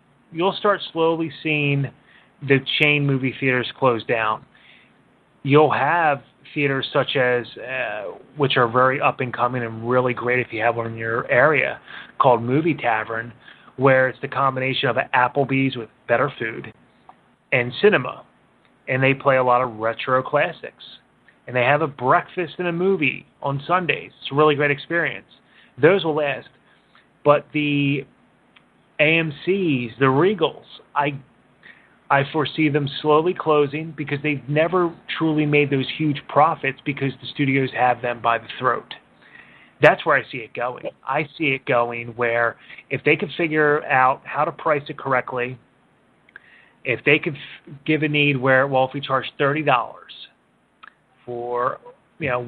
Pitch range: 125-150 Hz